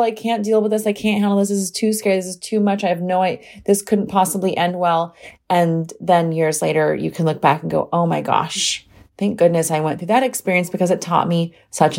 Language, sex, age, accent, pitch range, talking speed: English, female, 30-49, American, 170-215 Hz, 255 wpm